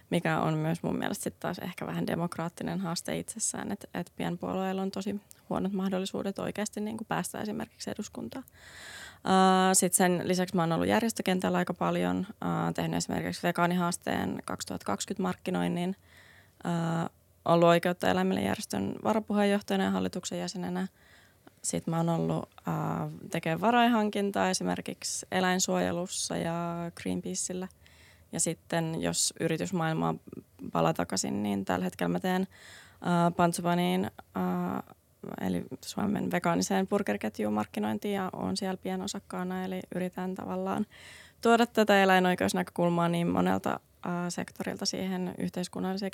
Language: Finnish